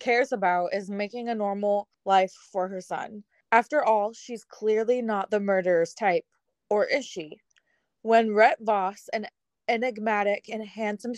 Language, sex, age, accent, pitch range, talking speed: English, female, 20-39, American, 195-240 Hz, 150 wpm